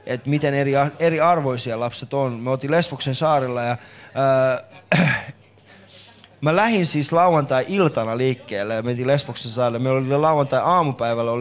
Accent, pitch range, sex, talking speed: native, 125-155 Hz, male, 125 wpm